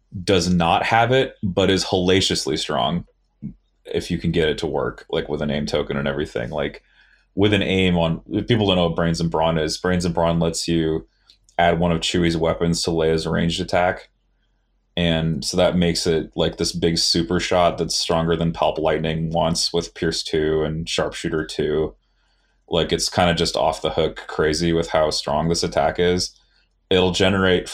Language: English